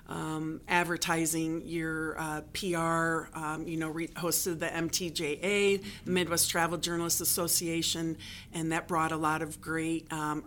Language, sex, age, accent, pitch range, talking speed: English, female, 40-59, American, 165-195 Hz, 145 wpm